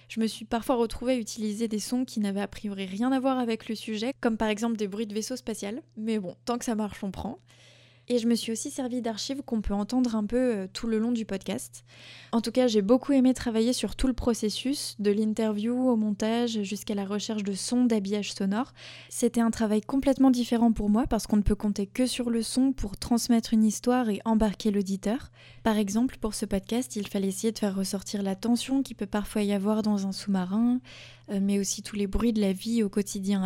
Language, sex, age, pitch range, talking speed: French, female, 20-39, 205-235 Hz, 230 wpm